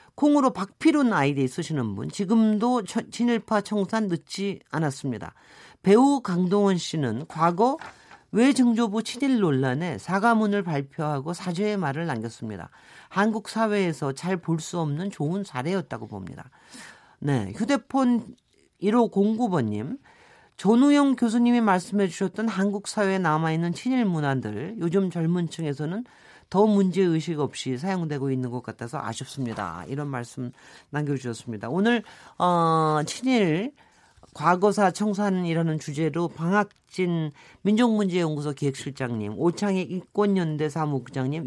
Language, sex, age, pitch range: Korean, male, 40-59, 145-210 Hz